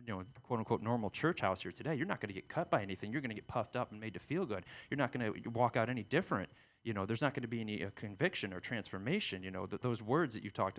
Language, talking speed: English, 310 wpm